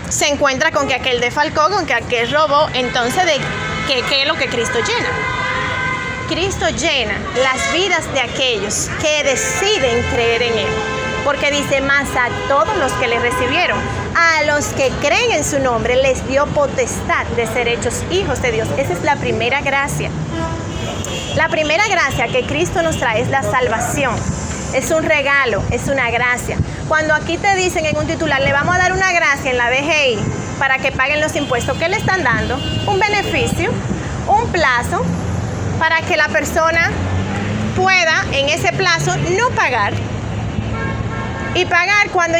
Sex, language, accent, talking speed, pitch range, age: female, Spanish, American, 165 wpm, 255-335 Hz, 30-49